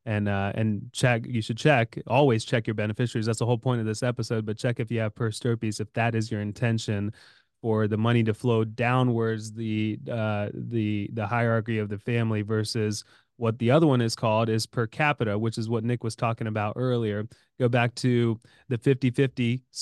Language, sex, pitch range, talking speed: English, male, 110-125 Hz, 205 wpm